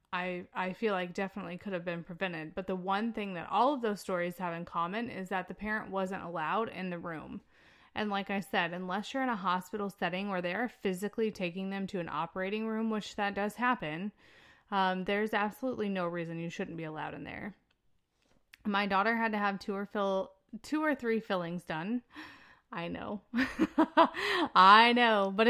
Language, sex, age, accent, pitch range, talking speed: English, female, 30-49, American, 175-220 Hz, 195 wpm